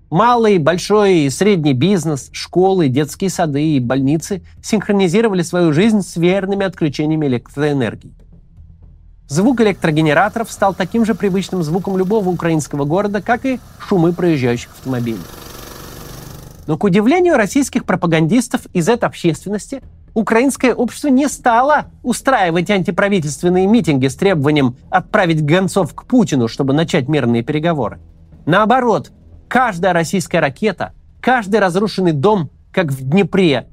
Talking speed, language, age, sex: 120 wpm, Russian, 30-49, male